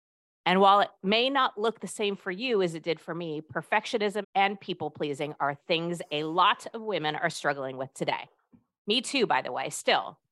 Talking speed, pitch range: 200 wpm, 150-200 Hz